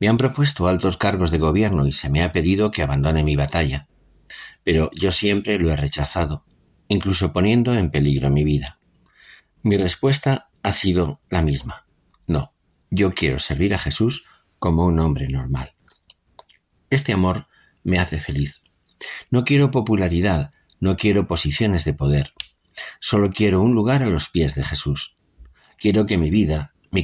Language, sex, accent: Spanish, male, Spanish